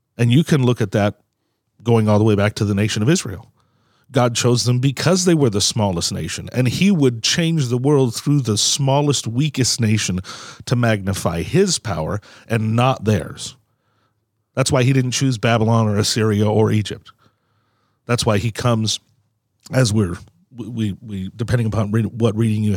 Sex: male